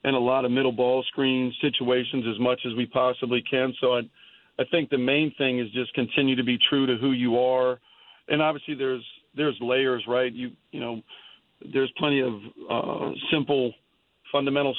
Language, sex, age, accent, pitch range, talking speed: English, male, 40-59, American, 120-135 Hz, 185 wpm